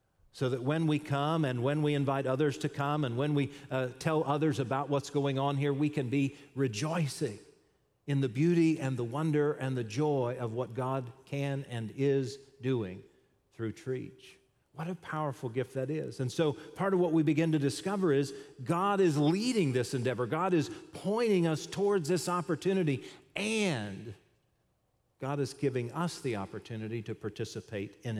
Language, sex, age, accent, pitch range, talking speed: English, male, 50-69, American, 130-160 Hz, 175 wpm